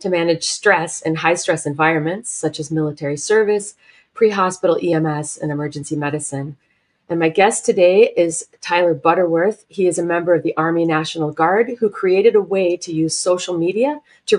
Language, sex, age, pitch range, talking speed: English, female, 30-49, 155-190 Hz, 170 wpm